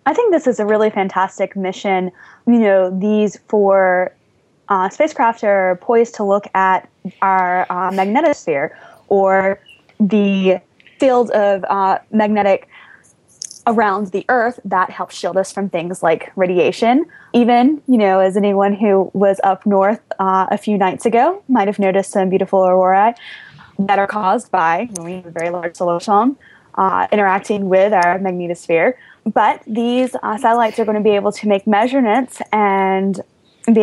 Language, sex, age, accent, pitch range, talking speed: English, female, 20-39, American, 190-230 Hz, 155 wpm